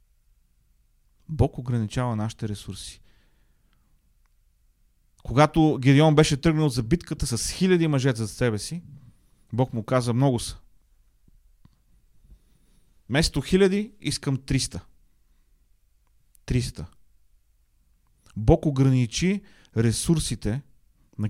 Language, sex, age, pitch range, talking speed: Bulgarian, male, 30-49, 115-155 Hz, 85 wpm